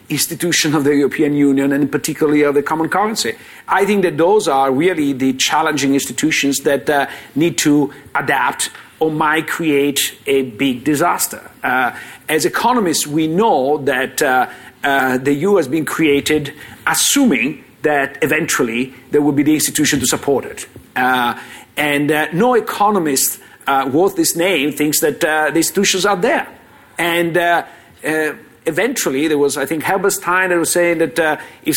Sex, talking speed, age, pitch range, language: male, 165 wpm, 50-69, 145-195 Hz, English